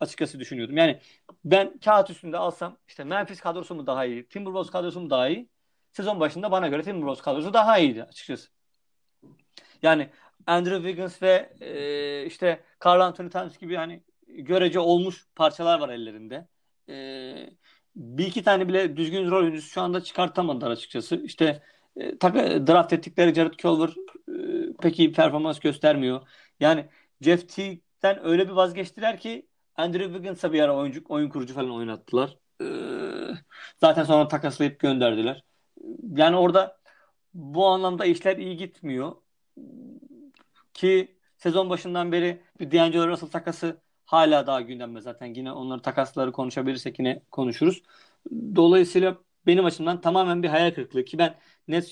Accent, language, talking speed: native, Turkish, 140 wpm